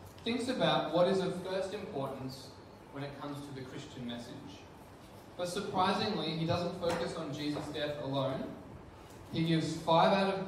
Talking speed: 160 wpm